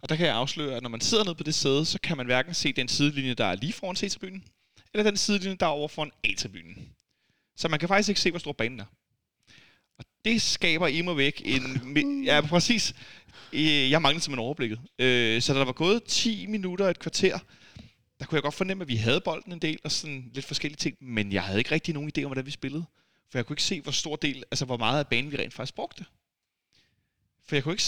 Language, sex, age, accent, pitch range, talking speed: Danish, male, 30-49, native, 125-165 Hz, 245 wpm